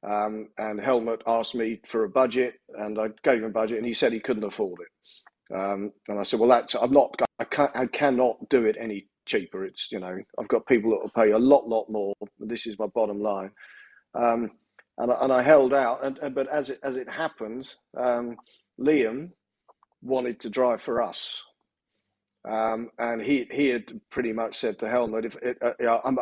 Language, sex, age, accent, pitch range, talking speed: English, male, 40-59, British, 110-125 Hz, 205 wpm